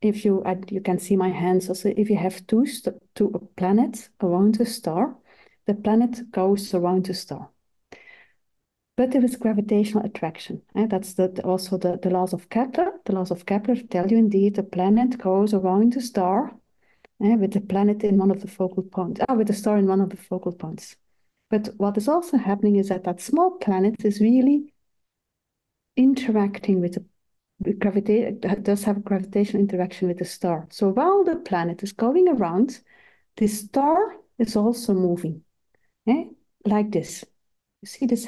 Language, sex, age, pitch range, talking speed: English, female, 50-69, 190-235 Hz, 180 wpm